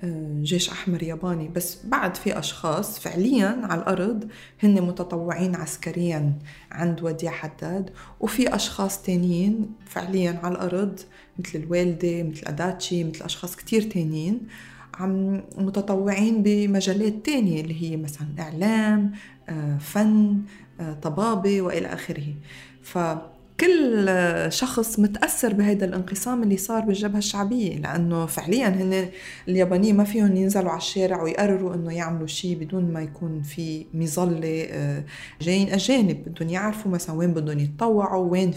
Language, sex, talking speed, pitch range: Arabic, female, 120 wpm, 170-205 Hz